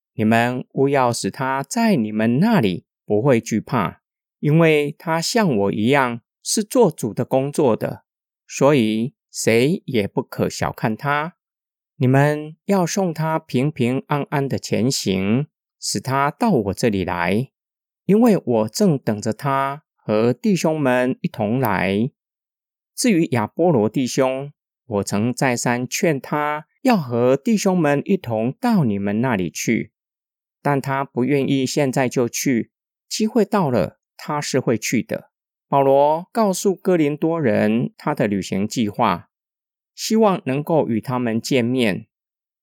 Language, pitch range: Chinese, 115-155 Hz